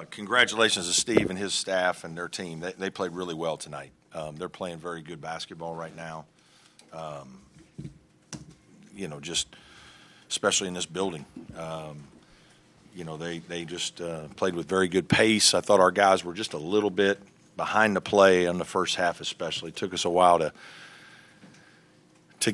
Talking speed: 180 wpm